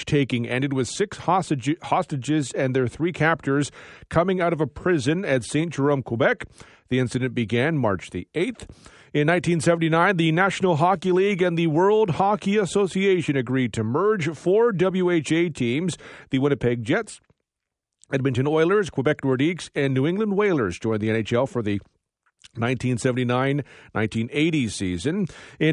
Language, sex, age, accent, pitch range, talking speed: English, male, 40-59, American, 125-165 Hz, 140 wpm